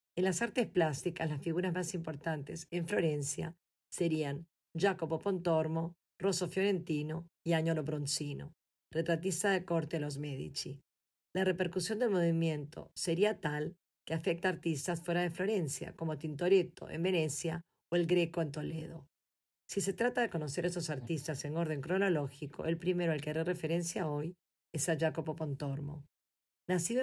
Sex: female